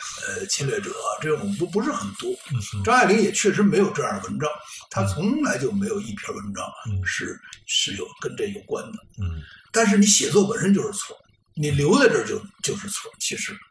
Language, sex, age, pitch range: Chinese, male, 60-79, 140-215 Hz